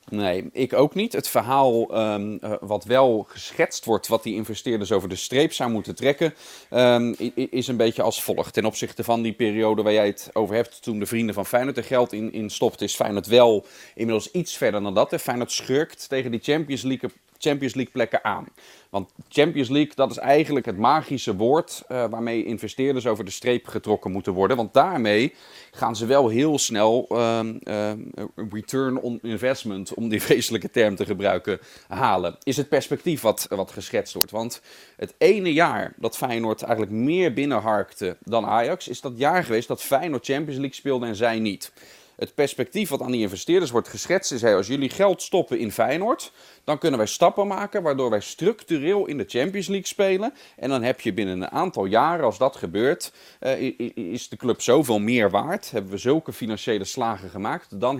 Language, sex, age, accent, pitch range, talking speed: Dutch, male, 30-49, Dutch, 110-140 Hz, 190 wpm